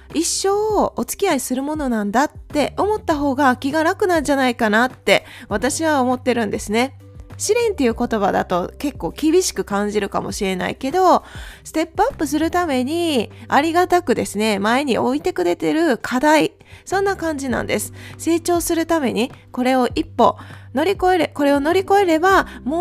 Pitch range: 235-330 Hz